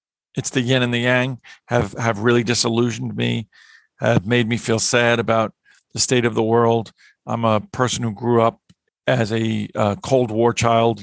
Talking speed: 185 wpm